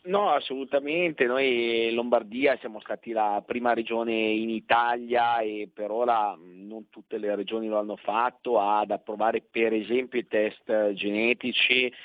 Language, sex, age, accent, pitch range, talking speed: Italian, male, 40-59, native, 105-120 Hz, 145 wpm